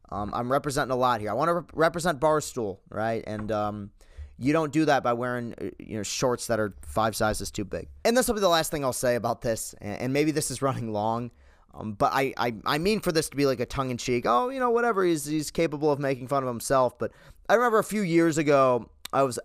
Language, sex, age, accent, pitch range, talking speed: English, male, 30-49, American, 110-165 Hz, 250 wpm